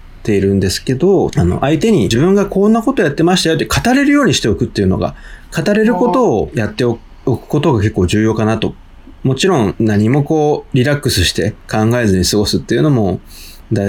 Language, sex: Japanese, male